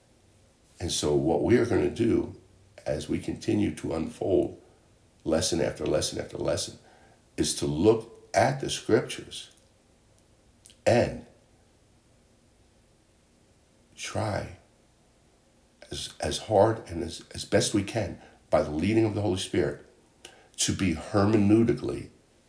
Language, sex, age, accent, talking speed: English, male, 60-79, American, 115 wpm